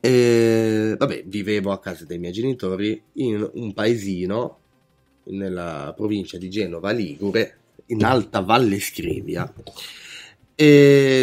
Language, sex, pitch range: Italian, male, 95-135 Hz